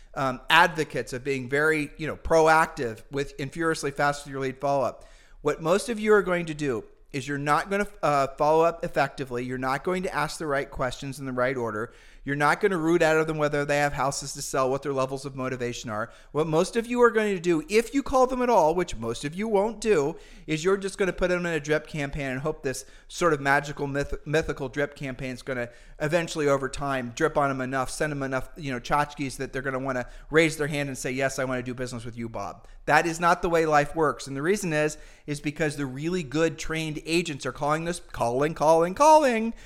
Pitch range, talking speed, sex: 135-165 Hz, 250 wpm, male